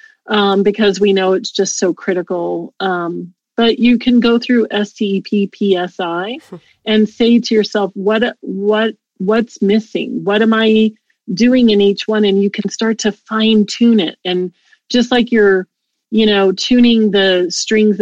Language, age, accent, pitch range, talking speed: English, 30-49, American, 185-225 Hz, 155 wpm